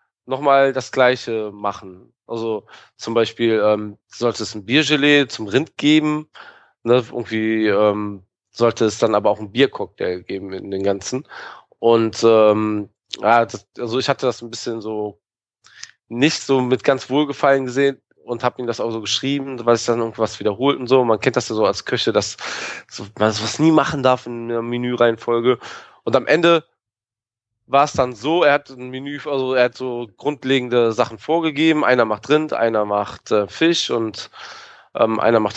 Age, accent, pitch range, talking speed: 20-39, German, 110-135 Hz, 180 wpm